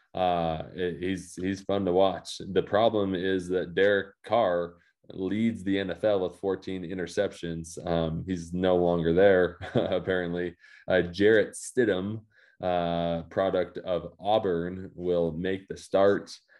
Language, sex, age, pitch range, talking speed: English, male, 20-39, 90-100 Hz, 125 wpm